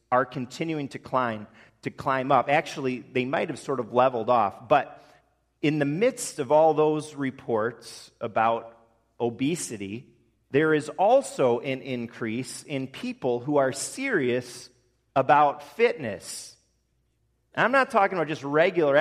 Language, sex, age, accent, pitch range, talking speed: English, male, 40-59, American, 115-160 Hz, 140 wpm